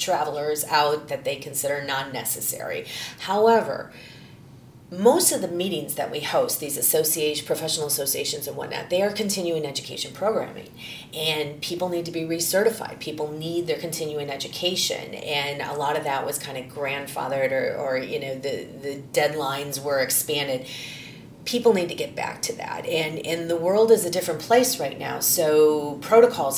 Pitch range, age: 140-170 Hz, 30-49